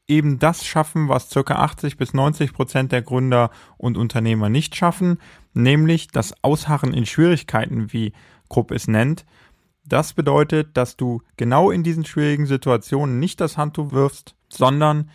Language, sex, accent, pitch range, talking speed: German, male, German, 125-170 Hz, 150 wpm